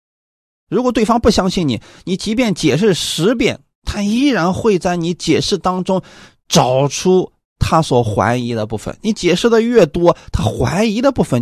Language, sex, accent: Chinese, male, native